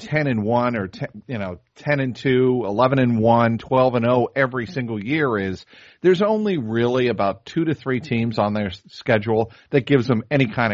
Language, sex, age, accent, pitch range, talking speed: English, male, 40-59, American, 110-135 Hz, 200 wpm